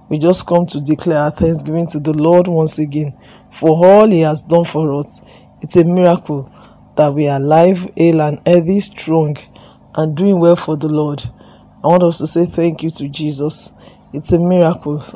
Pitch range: 155-175 Hz